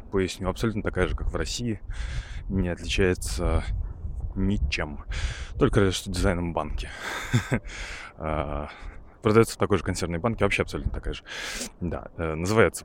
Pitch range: 80-105 Hz